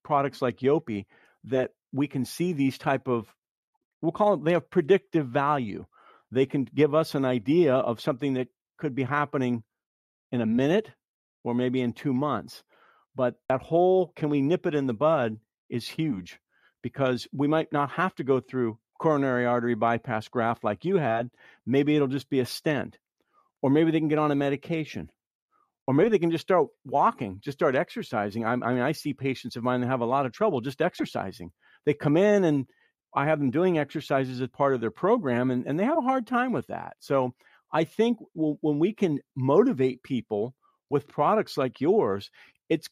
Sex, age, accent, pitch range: male, 50-69, American, 125-160 Hz